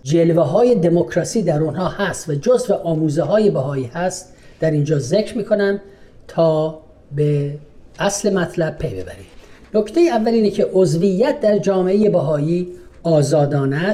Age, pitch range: 40-59, 155-200 Hz